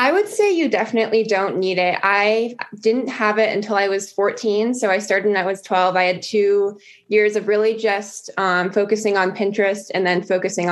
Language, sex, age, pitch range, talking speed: English, female, 20-39, 185-220 Hz, 205 wpm